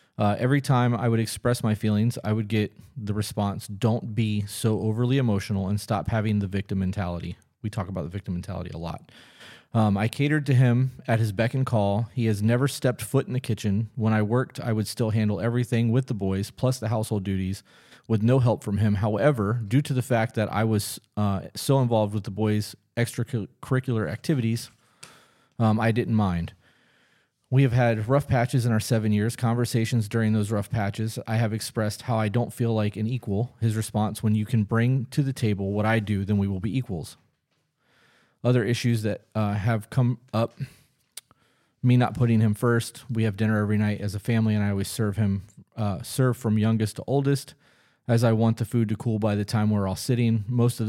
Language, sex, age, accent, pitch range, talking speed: English, male, 30-49, American, 105-120 Hz, 210 wpm